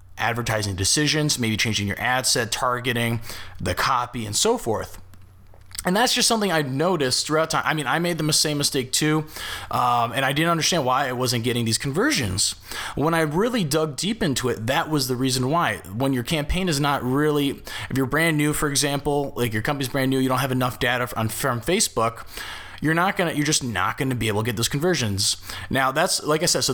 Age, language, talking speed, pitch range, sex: 20-39, English, 215 wpm, 115-150 Hz, male